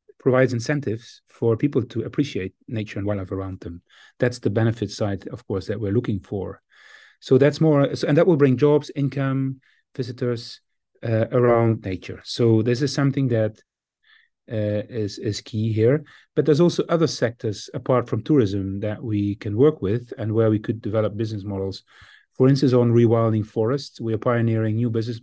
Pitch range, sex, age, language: 105-130 Hz, male, 30-49, English